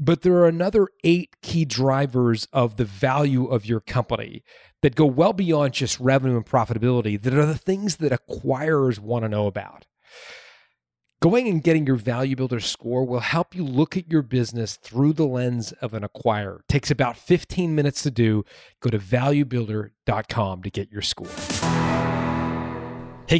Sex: male